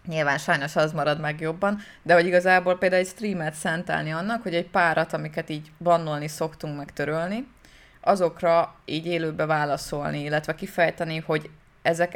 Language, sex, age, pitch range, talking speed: Hungarian, female, 20-39, 150-175 Hz, 150 wpm